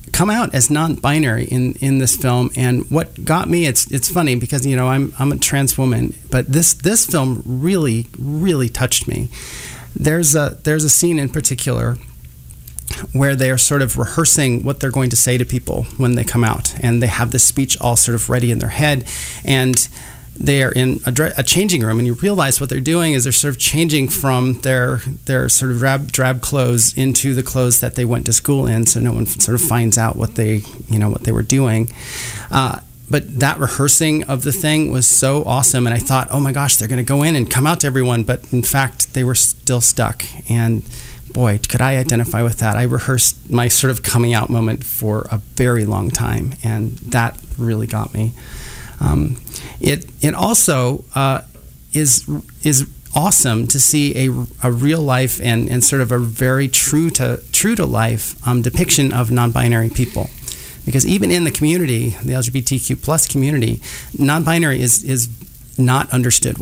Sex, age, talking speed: male, 30-49, 195 wpm